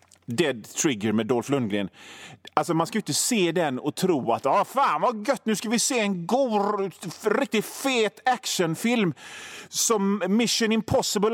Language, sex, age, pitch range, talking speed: Swedish, male, 30-49, 130-205 Hz, 165 wpm